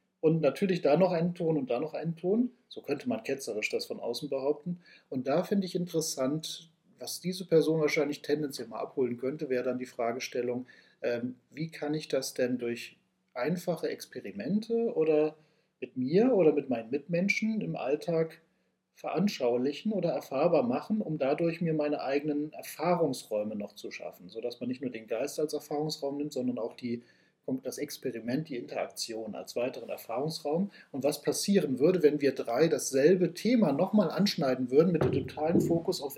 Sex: male